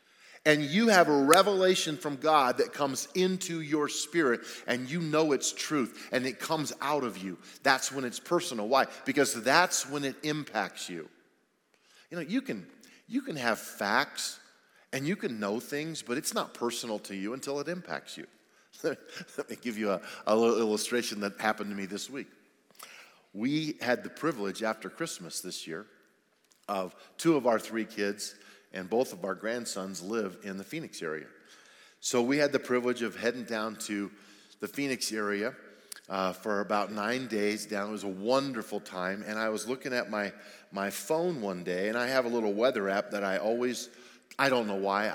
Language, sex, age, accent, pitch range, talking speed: English, male, 40-59, American, 105-145 Hz, 185 wpm